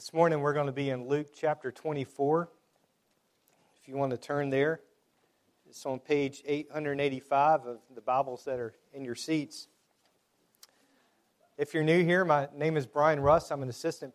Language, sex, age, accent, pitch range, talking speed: English, male, 40-59, American, 135-165 Hz, 170 wpm